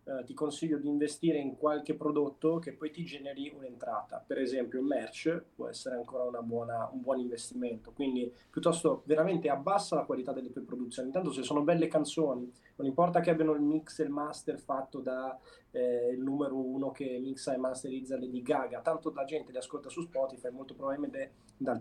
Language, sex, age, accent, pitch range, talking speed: Italian, male, 20-39, native, 130-160 Hz, 185 wpm